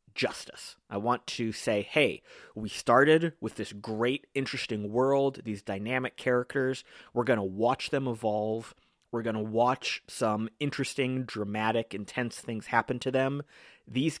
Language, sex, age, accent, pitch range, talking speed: English, male, 30-49, American, 110-140 Hz, 150 wpm